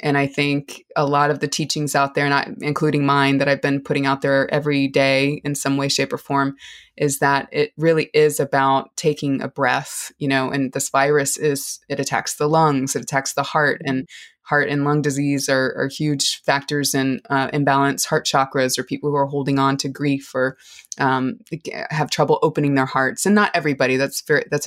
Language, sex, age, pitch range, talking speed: English, female, 20-39, 135-150 Hz, 200 wpm